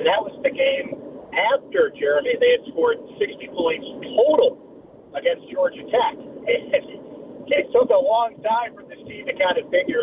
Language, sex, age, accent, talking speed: English, male, 40-59, American, 160 wpm